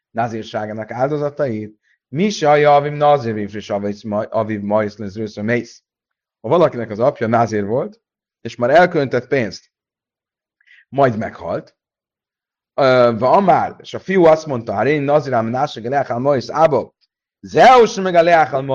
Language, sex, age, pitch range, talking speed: Hungarian, male, 30-49, 115-155 Hz, 130 wpm